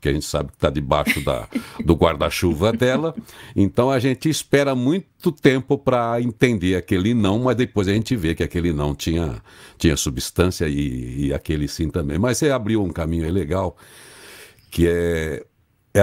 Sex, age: male, 60-79